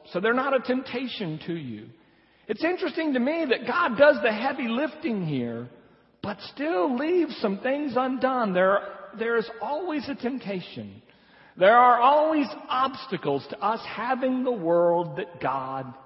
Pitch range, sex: 160-250 Hz, male